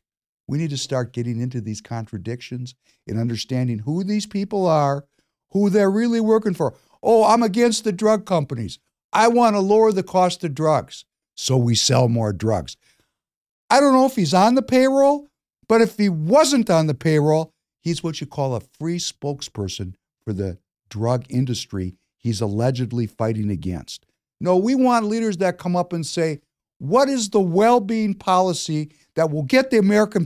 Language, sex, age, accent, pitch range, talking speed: English, male, 60-79, American, 125-195 Hz, 175 wpm